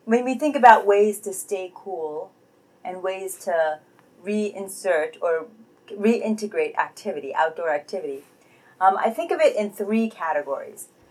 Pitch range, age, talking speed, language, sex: 170-210 Hz, 30-49, 135 wpm, English, female